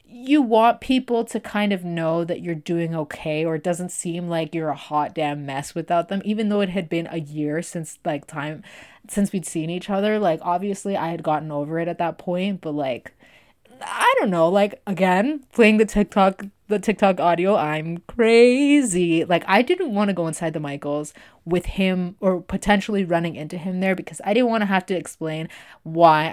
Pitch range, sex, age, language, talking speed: 160-205 Hz, female, 20-39, English, 205 wpm